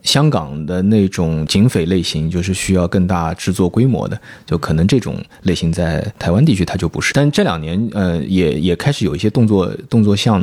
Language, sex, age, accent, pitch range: Chinese, male, 20-39, native, 90-110 Hz